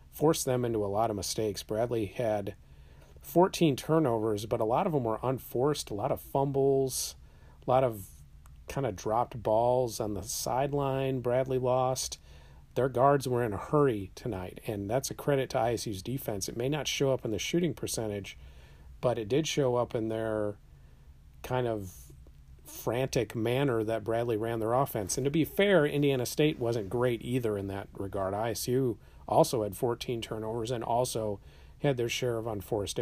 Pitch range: 95-125 Hz